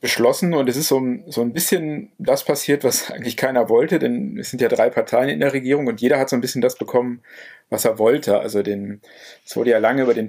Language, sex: German, male